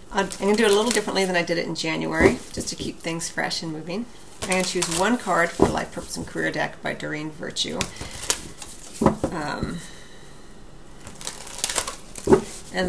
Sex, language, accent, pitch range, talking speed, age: female, English, American, 165-195 Hz, 180 wpm, 40-59